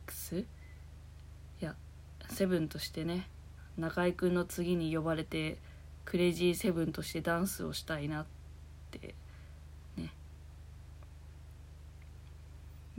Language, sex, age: Japanese, female, 20-39